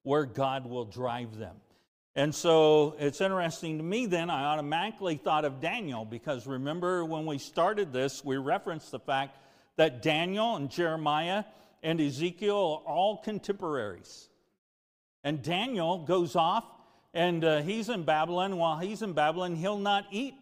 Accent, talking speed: American, 155 wpm